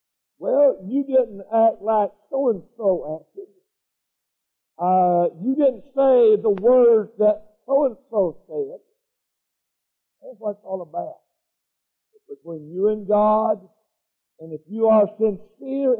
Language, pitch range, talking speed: English, 190-265 Hz, 115 wpm